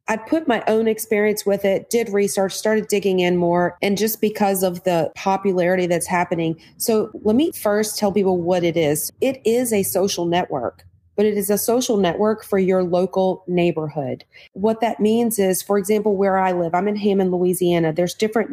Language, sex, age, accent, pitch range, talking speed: English, female, 30-49, American, 175-200 Hz, 195 wpm